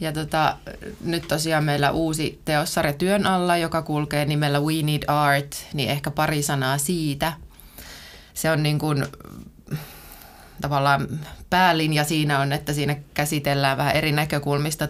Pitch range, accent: 140-155 Hz, native